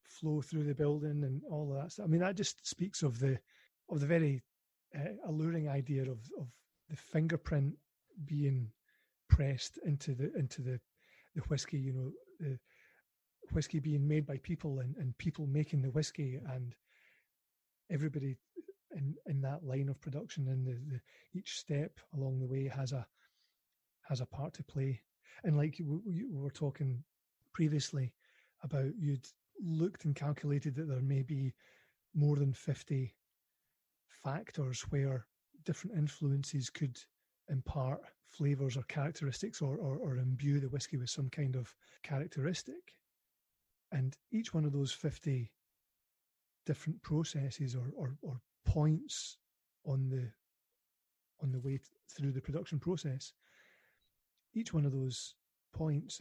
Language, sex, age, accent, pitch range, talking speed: English, male, 30-49, British, 135-155 Hz, 145 wpm